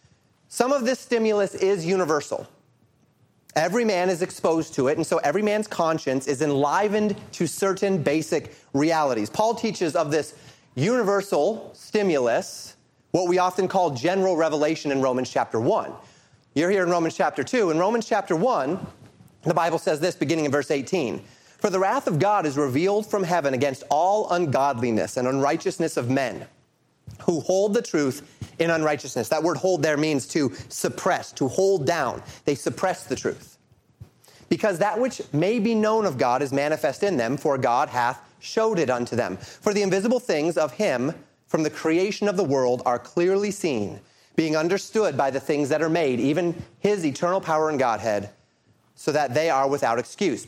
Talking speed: 175 wpm